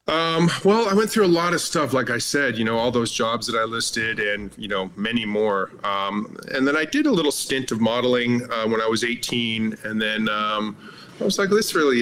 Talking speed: 240 wpm